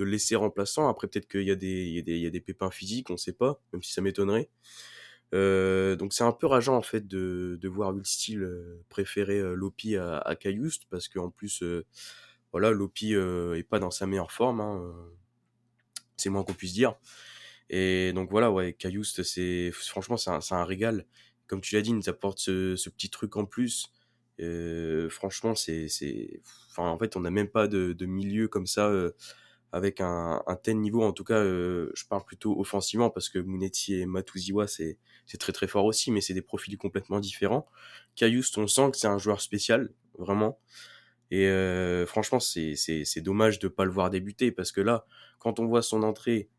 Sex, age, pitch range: male, 20-39, 90-110 Hz